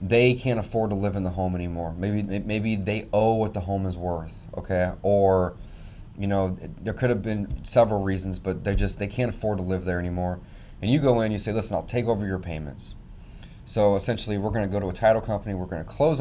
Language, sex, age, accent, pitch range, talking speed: English, male, 30-49, American, 90-110 Hz, 230 wpm